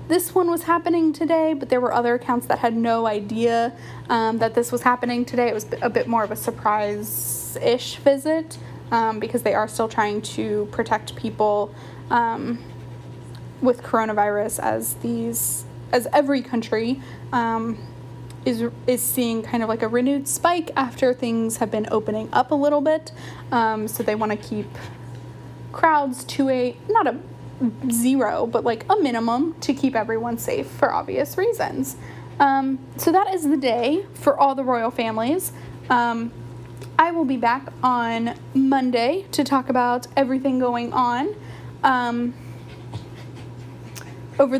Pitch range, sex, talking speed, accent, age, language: 220-275 Hz, female, 155 wpm, American, 10-29, English